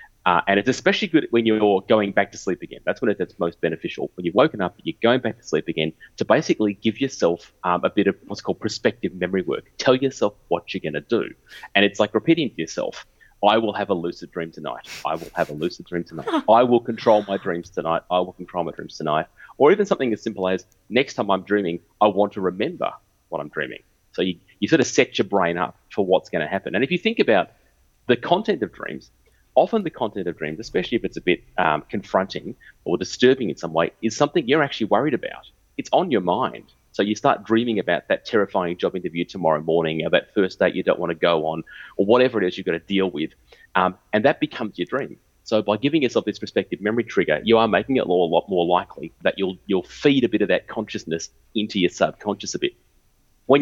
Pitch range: 85-115 Hz